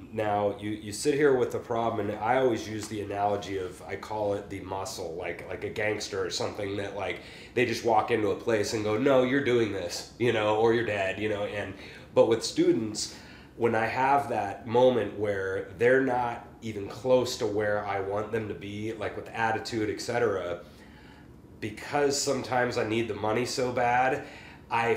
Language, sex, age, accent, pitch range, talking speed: English, male, 30-49, American, 105-125 Hz, 195 wpm